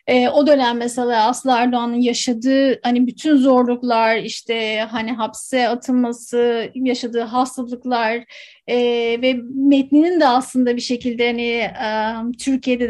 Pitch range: 240-285 Hz